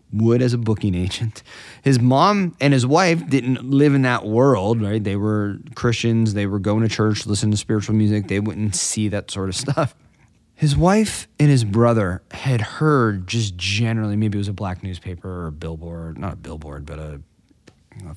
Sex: male